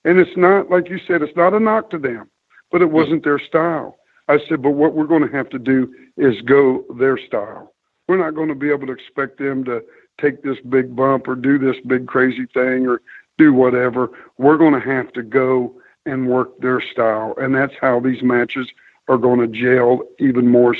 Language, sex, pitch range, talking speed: English, male, 130-160 Hz, 215 wpm